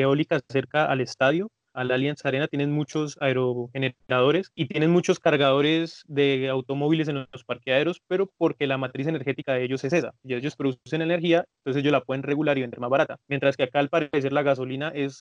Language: Spanish